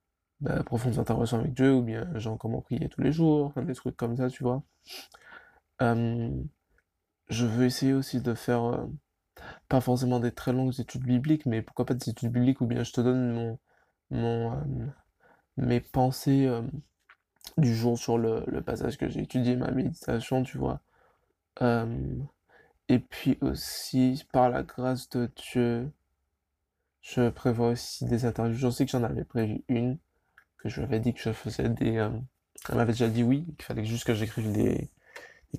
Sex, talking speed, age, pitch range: male, 180 wpm, 20-39, 115-130 Hz